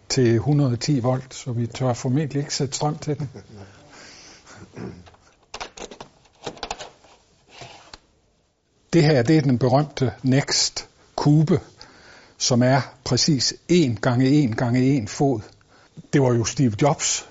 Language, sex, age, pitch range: Danish, male, 60-79, 110-135 Hz